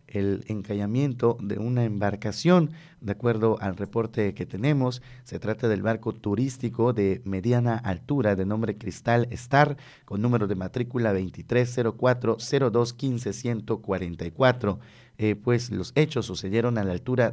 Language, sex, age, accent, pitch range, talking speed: Spanish, male, 30-49, Mexican, 100-120 Hz, 125 wpm